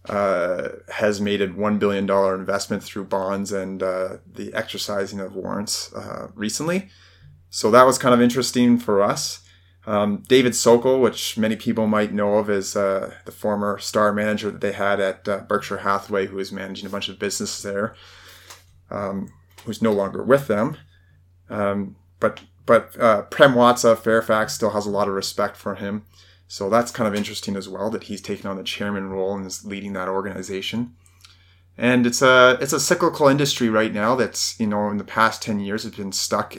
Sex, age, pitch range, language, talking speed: male, 30-49, 95-105 Hz, English, 190 wpm